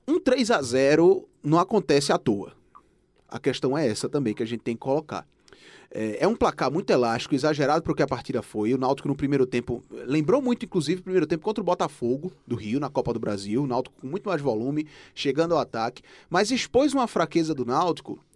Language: Portuguese